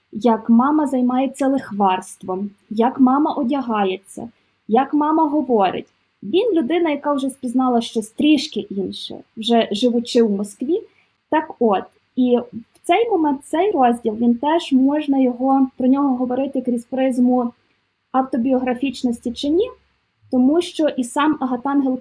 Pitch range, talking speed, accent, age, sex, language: 225-275 Hz, 130 wpm, native, 20-39, female, Ukrainian